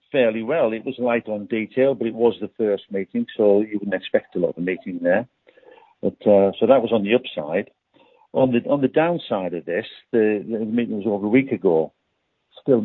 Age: 60-79